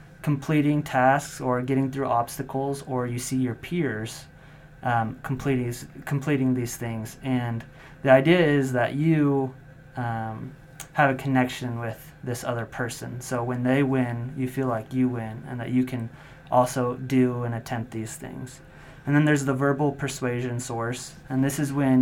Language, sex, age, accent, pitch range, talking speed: English, male, 30-49, American, 120-140 Hz, 165 wpm